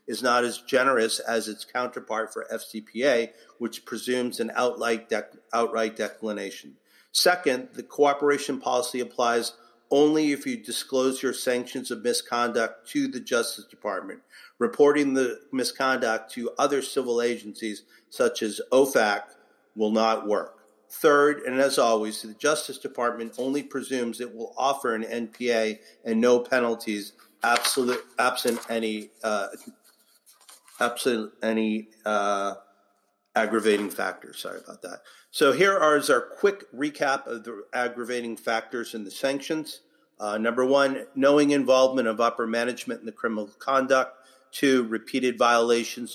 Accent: American